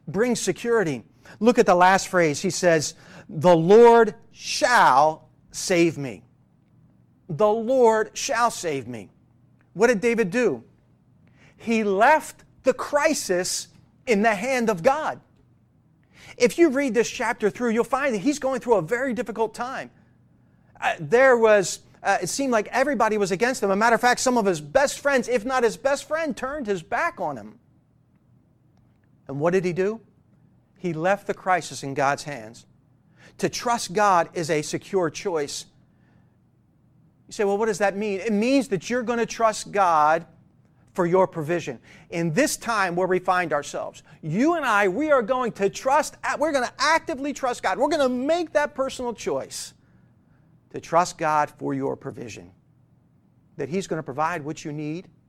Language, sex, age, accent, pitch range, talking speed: English, male, 40-59, American, 170-245 Hz, 170 wpm